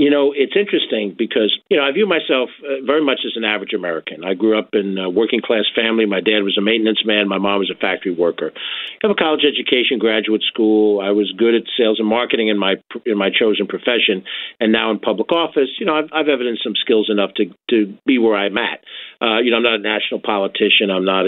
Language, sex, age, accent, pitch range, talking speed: English, male, 50-69, American, 105-135 Hz, 240 wpm